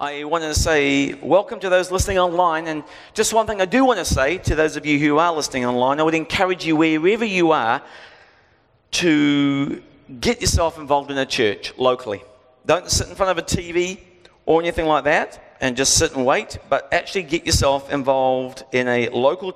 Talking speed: 200 wpm